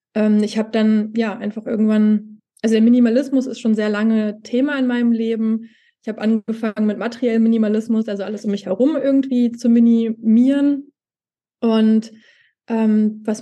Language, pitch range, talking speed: German, 215-240 Hz, 150 wpm